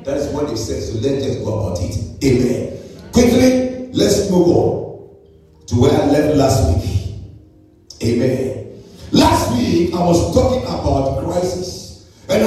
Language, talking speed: English, 145 wpm